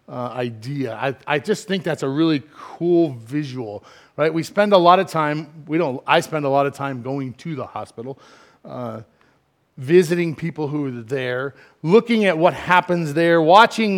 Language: English